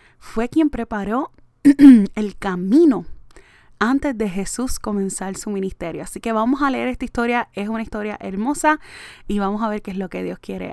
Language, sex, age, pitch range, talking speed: Spanish, female, 20-39, 185-225 Hz, 180 wpm